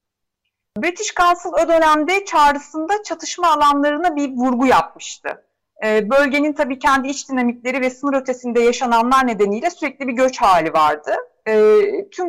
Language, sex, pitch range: Turkish, female, 210-295 Hz